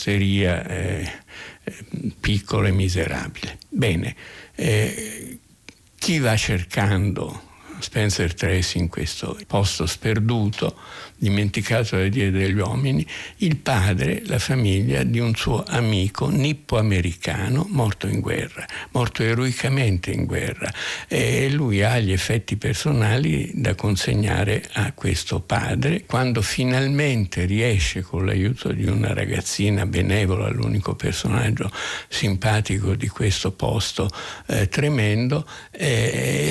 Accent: native